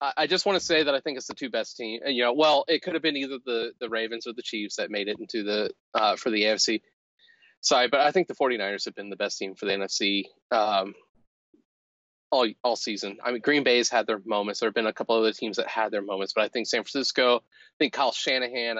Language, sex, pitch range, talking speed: English, male, 105-145 Hz, 260 wpm